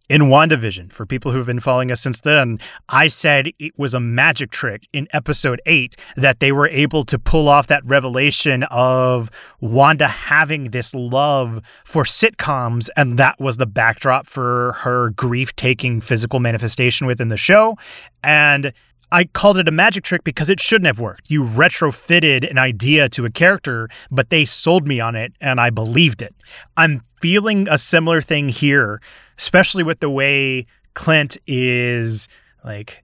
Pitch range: 125-155 Hz